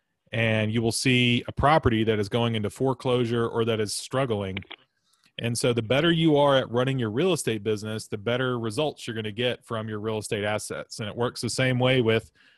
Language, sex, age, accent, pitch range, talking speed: English, male, 30-49, American, 110-125 Hz, 220 wpm